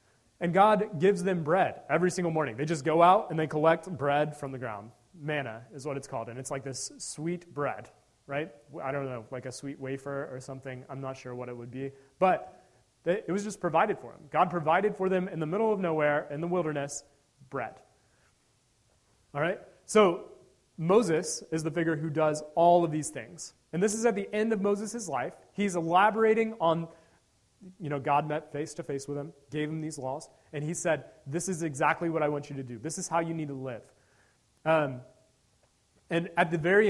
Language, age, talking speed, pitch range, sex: English, 30-49, 210 wpm, 135-175 Hz, male